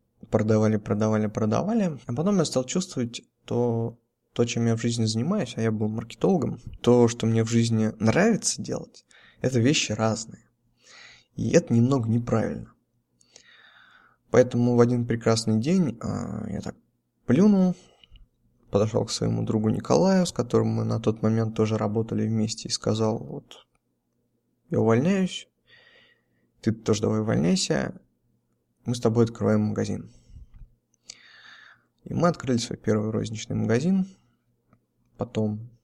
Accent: native